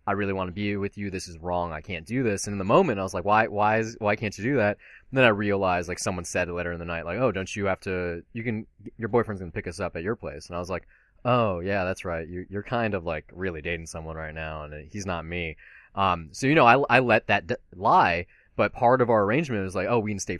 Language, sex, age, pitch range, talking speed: English, male, 20-39, 90-115 Hz, 295 wpm